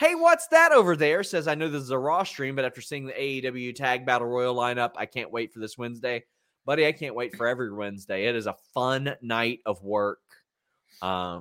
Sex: male